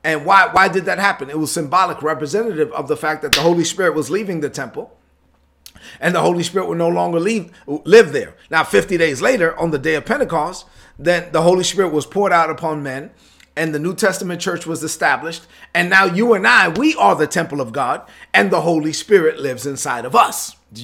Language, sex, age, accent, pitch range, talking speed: English, male, 40-59, American, 155-205 Hz, 220 wpm